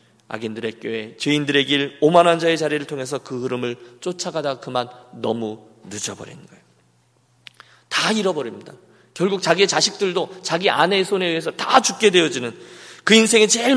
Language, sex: Korean, male